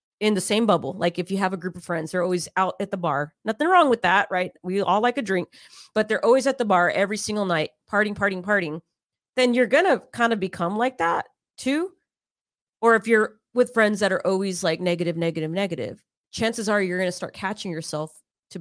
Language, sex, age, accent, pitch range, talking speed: English, female, 30-49, American, 175-215 Hz, 230 wpm